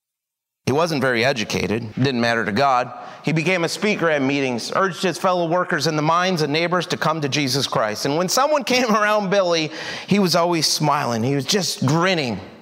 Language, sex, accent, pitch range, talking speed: English, male, American, 155-235 Hz, 200 wpm